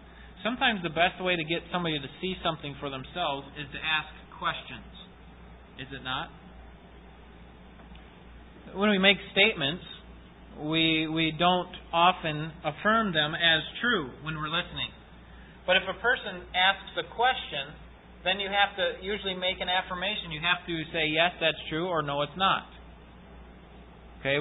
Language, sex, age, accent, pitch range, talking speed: English, male, 30-49, American, 150-195 Hz, 150 wpm